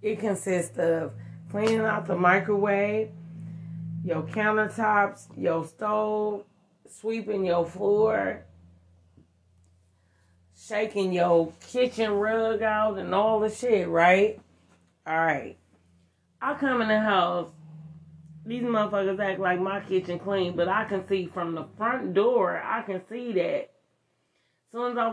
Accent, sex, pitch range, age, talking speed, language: American, female, 160-215 Hz, 30-49, 125 wpm, English